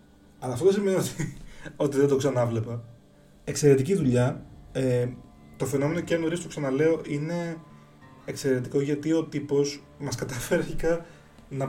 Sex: male